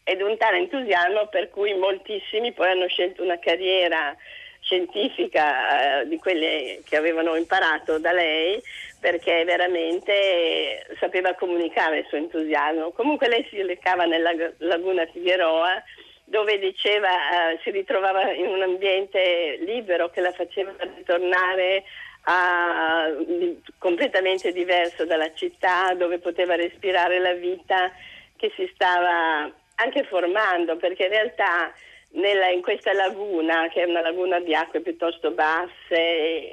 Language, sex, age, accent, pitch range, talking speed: Italian, female, 50-69, native, 165-195 Hz, 125 wpm